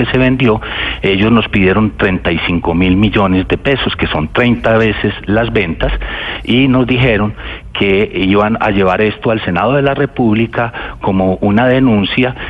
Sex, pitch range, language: male, 95-125 Hz, Spanish